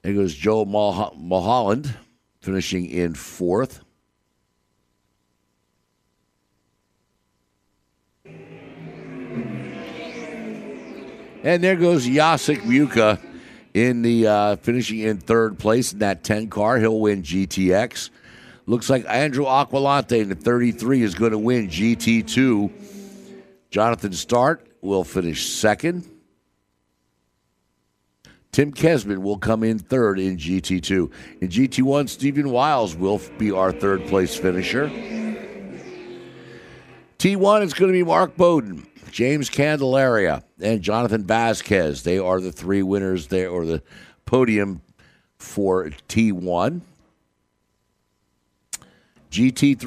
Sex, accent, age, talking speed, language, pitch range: male, American, 60-79, 100 wpm, English, 95-145 Hz